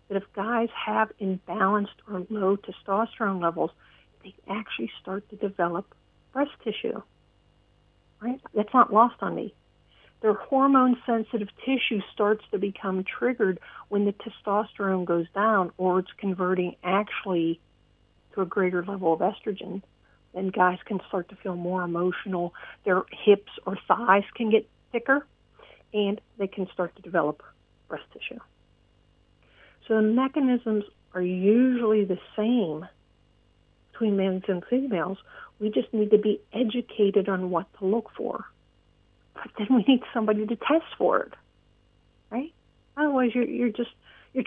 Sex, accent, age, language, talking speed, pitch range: female, American, 50-69, English, 140 wpm, 170-225 Hz